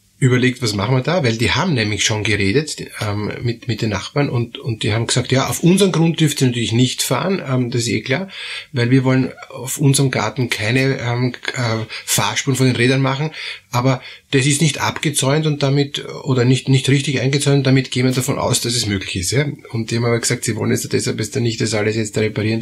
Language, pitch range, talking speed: German, 120-140 Hz, 230 wpm